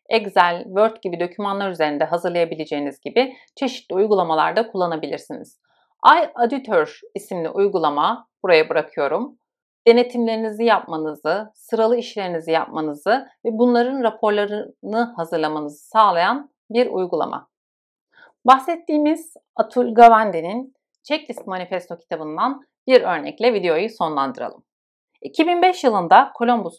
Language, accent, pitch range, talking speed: Turkish, native, 170-245 Hz, 90 wpm